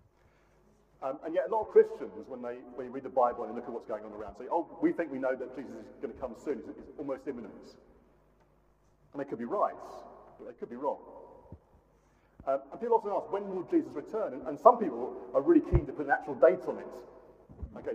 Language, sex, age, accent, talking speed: English, male, 40-59, British, 245 wpm